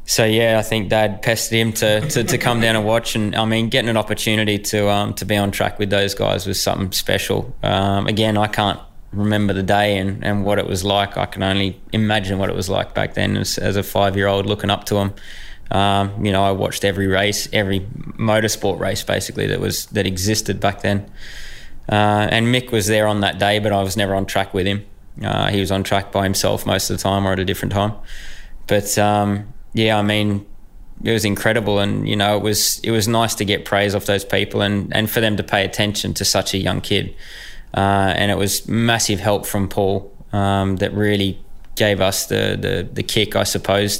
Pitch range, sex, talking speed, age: 100-105 Hz, male, 225 wpm, 20-39